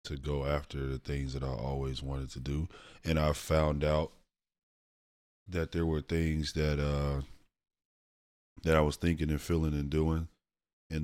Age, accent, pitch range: 20-39, American, 70-80 Hz